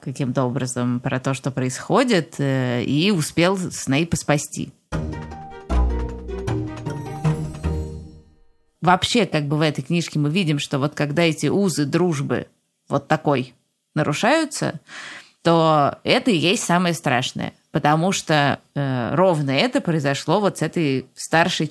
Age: 20-39